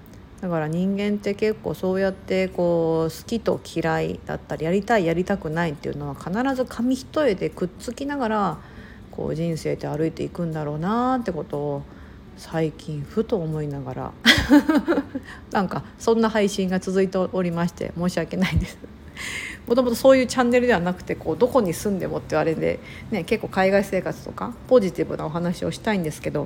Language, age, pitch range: Japanese, 50-69, 155-225 Hz